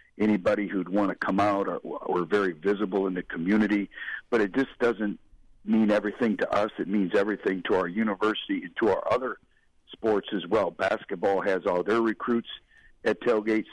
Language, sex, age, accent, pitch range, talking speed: English, male, 50-69, American, 100-110 Hz, 180 wpm